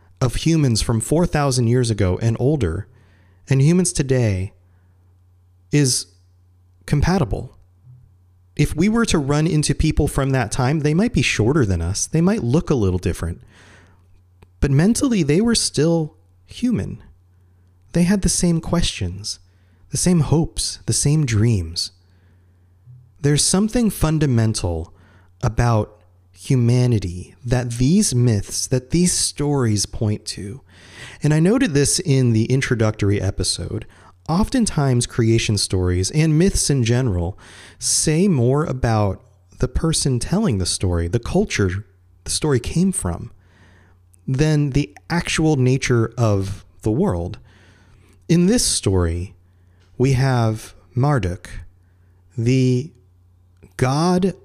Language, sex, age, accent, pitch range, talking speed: English, male, 30-49, American, 90-145 Hz, 120 wpm